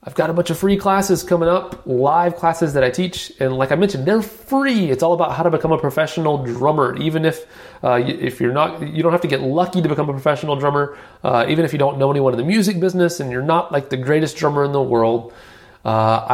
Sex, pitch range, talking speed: male, 120-160 Hz, 255 wpm